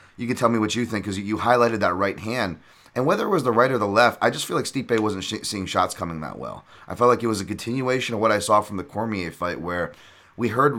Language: English